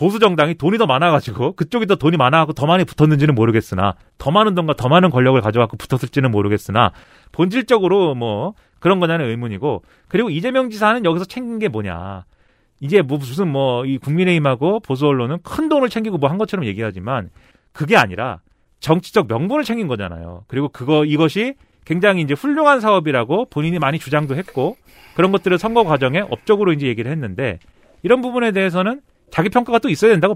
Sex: male